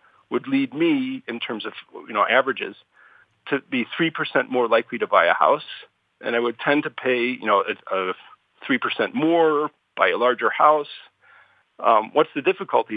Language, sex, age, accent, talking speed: English, male, 50-69, American, 175 wpm